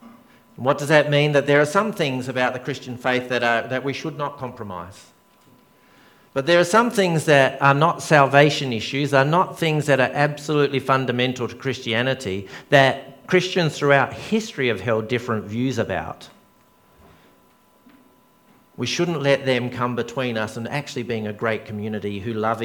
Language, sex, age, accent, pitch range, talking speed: English, male, 50-69, Australian, 110-140 Hz, 165 wpm